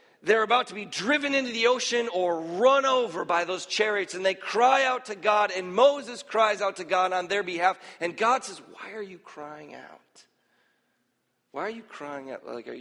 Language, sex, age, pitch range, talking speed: English, male, 40-59, 130-185 Hz, 205 wpm